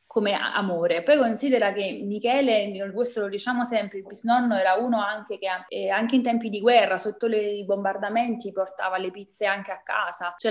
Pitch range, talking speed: 195-235 Hz, 175 wpm